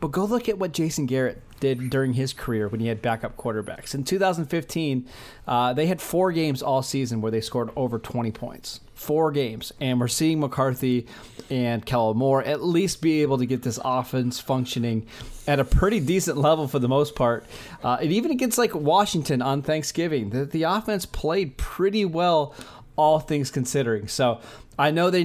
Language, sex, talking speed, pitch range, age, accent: English, male, 190 wpm, 120-155 Hz, 30-49, American